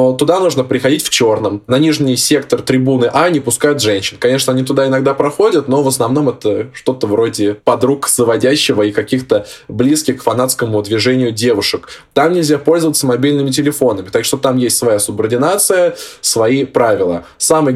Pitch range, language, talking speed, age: 120-150 Hz, Russian, 160 wpm, 20-39